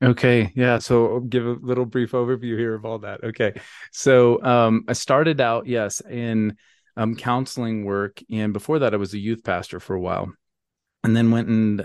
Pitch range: 100-115 Hz